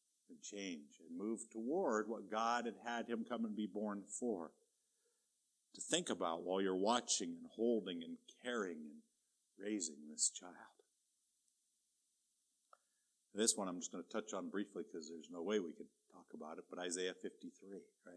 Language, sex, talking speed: English, male, 165 wpm